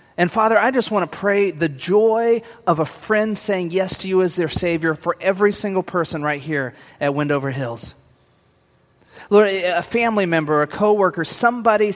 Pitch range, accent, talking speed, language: 140-185 Hz, American, 175 wpm, English